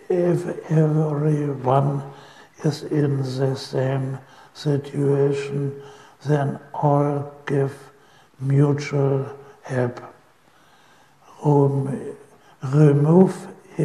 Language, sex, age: Chinese, male, 60-79